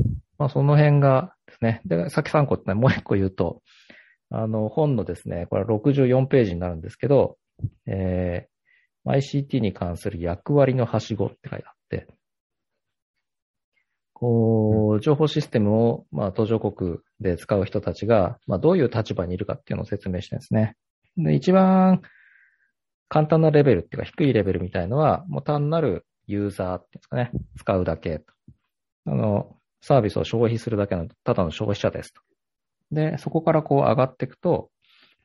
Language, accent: Japanese, native